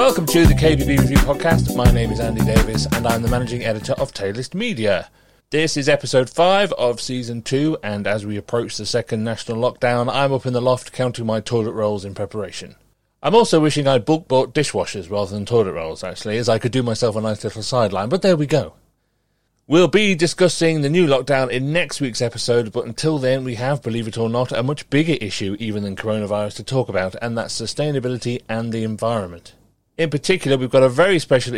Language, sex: English, male